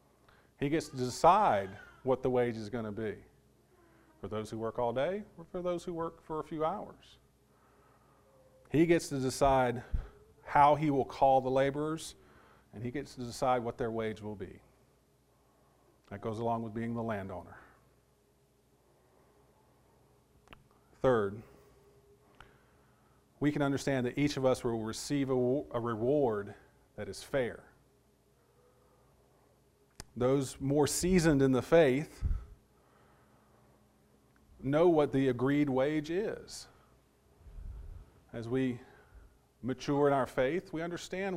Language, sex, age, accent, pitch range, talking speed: English, male, 40-59, American, 115-145 Hz, 130 wpm